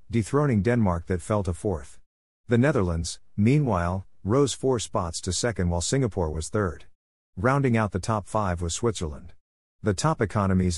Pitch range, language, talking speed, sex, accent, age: 90-115 Hz, English, 155 wpm, male, American, 50-69